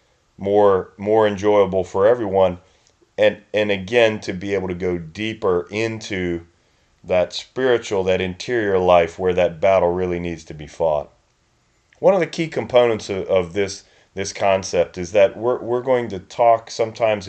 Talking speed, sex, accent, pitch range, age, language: 160 wpm, male, American, 90-110 Hz, 40-59, English